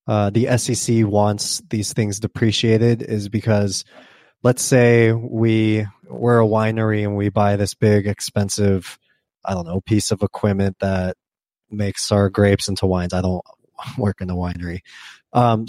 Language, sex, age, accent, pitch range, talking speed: English, male, 20-39, American, 105-125 Hz, 155 wpm